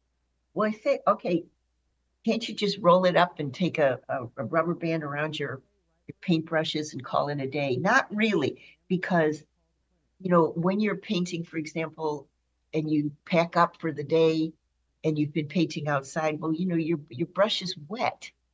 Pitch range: 140-175 Hz